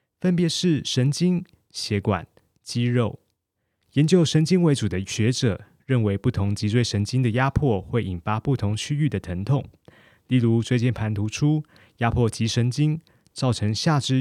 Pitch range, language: 105-140 Hz, Chinese